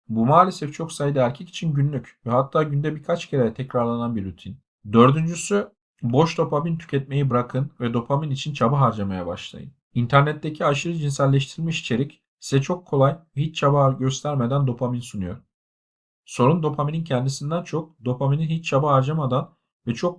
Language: Turkish